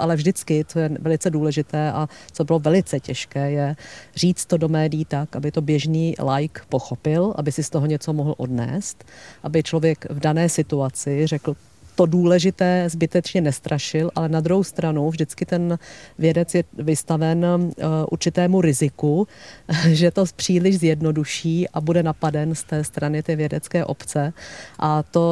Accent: native